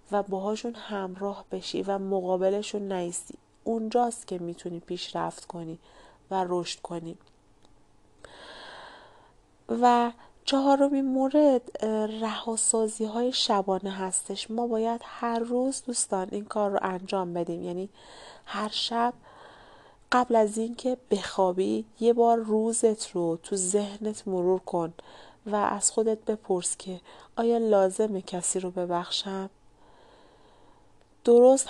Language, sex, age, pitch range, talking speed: Persian, female, 40-59, 180-225 Hz, 110 wpm